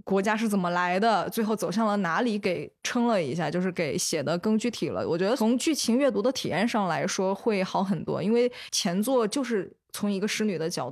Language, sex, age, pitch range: Chinese, female, 20-39, 175-215 Hz